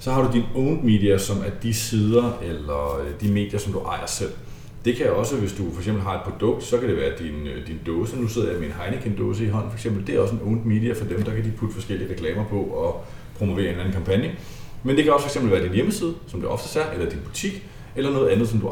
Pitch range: 95-120 Hz